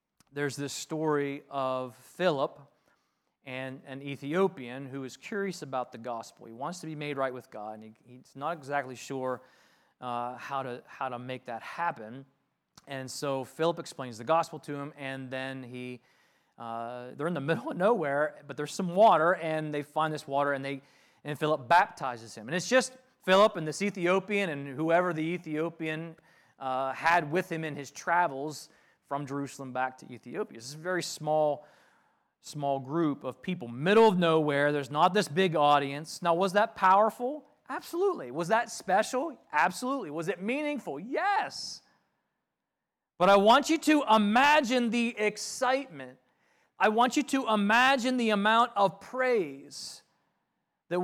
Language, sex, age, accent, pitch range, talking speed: English, male, 30-49, American, 135-200 Hz, 165 wpm